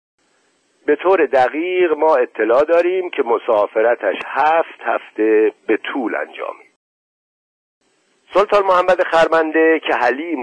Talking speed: 105 wpm